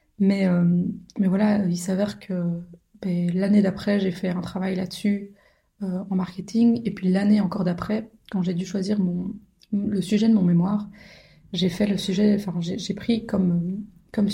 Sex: female